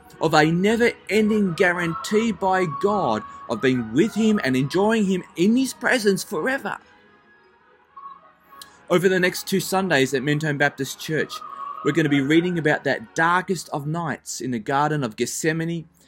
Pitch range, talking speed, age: 145-200 Hz, 155 wpm, 30-49